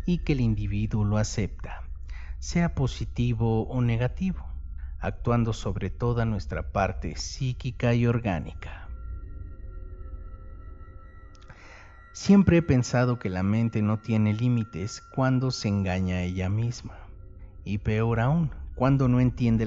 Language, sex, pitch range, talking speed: Spanish, male, 90-120 Hz, 120 wpm